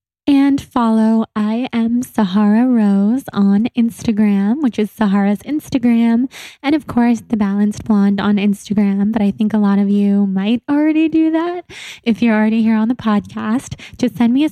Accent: American